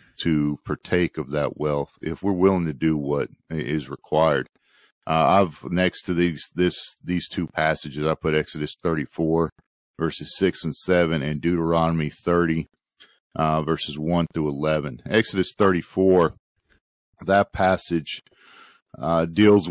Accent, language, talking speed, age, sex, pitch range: American, English, 135 wpm, 50-69, male, 80-90 Hz